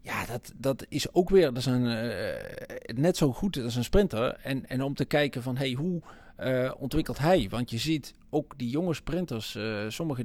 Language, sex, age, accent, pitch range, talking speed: Dutch, male, 40-59, Dutch, 125-170 Hz, 215 wpm